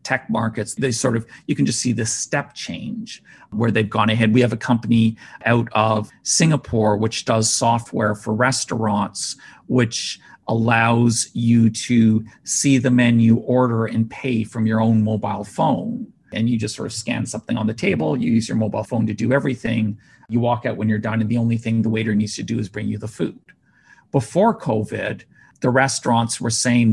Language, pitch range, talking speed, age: English, 110-130 Hz, 195 wpm, 40-59